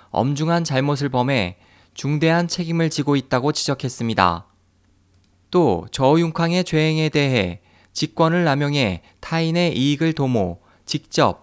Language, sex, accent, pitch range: Korean, male, native, 115-160 Hz